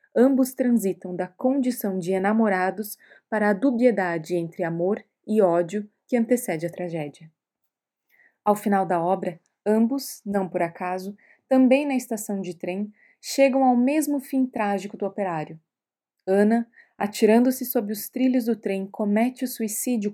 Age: 20-39